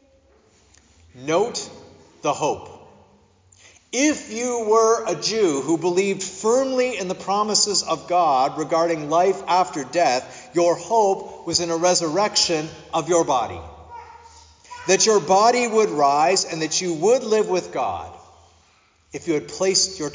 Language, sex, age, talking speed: English, male, 40-59, 135 wpm